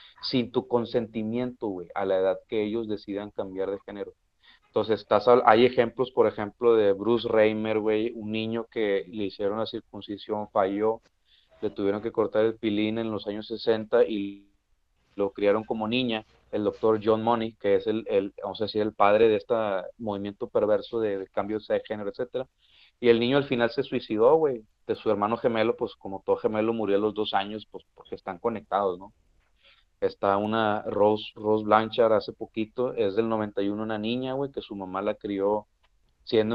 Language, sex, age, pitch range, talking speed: Spanish, male, 30-49, 105-120 Hz, 185 wpm